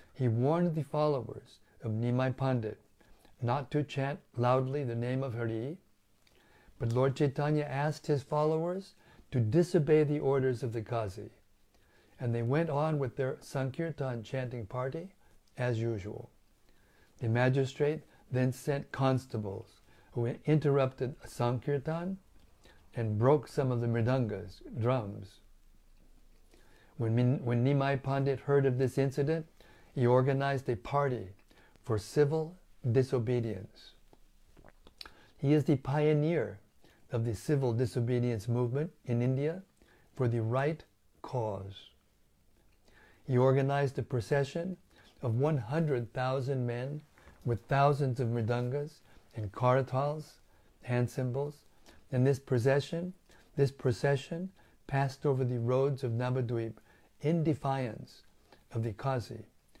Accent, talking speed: American, 115 wpm